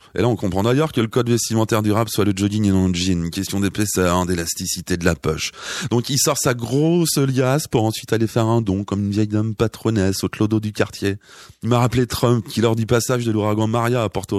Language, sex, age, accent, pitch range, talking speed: French, male, 30-49, French, 100-120 Hz, 245 wpm